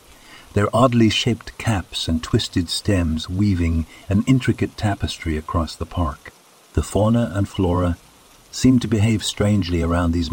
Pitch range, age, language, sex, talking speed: 85-110 Hz, 60-79, English, male, 140 wpm